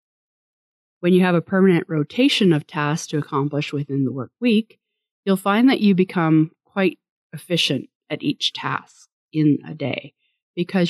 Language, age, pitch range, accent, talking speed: English, 30-49, 150-195 Hz, American, 155 wpm